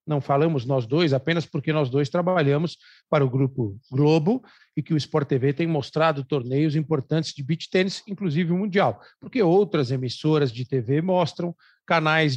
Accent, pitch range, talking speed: Brazilian, 140-190 Hz, 170 wpm